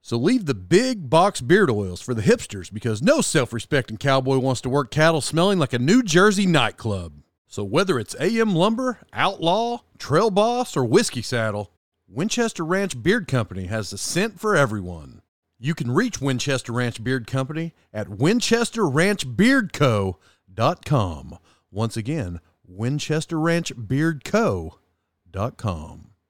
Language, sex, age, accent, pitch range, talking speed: English, male, 40-59, American, 105-165 Hz, 130 wpm